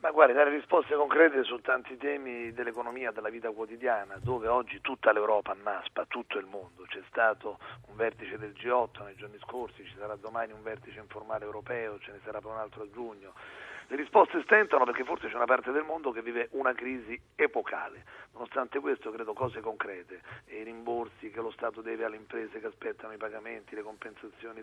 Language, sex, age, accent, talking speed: Italian, male, 40-59, native, 190 wpm